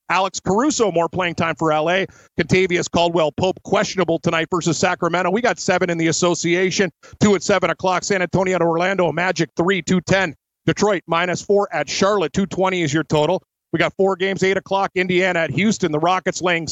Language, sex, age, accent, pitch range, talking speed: English, male, 40-59, American, 170-190 Hz, 185 wpm